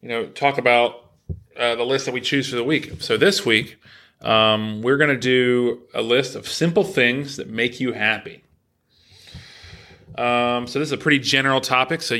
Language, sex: English, male